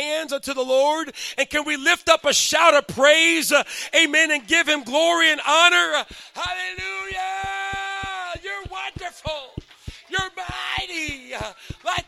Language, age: English, 40-59